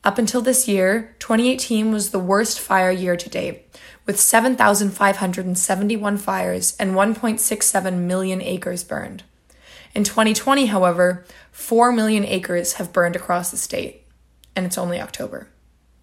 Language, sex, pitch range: English, female, 180-230 Hz